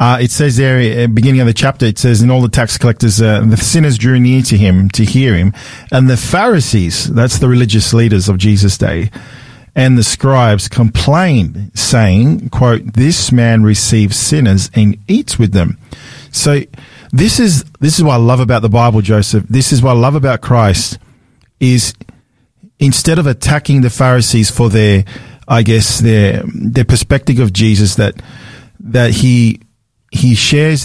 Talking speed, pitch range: 175 wpm, 110-135 Hz